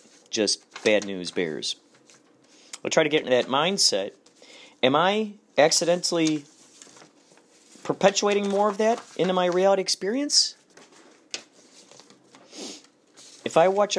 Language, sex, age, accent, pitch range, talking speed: English, male, 40-59, American, 120-190 Hz, 110 wpm